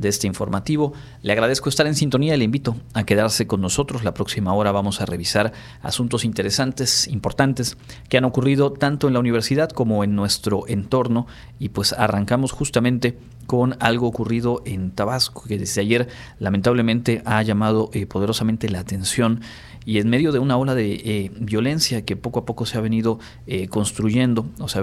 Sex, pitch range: male, 100-120 Hz